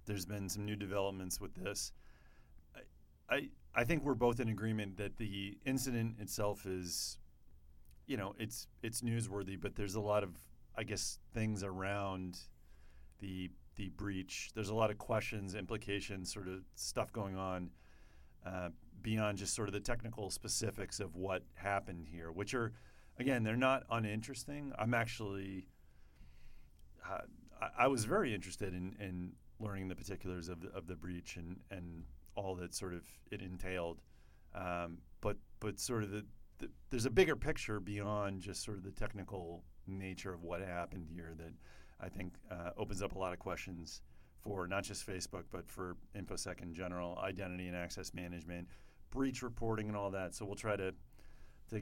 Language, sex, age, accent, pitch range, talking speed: English, male, 40-59, American, 85-105 Hz, 170 wpm